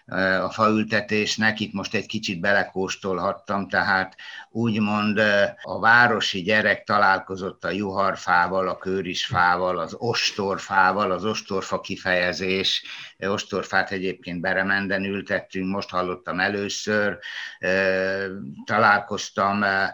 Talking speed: 90 wpm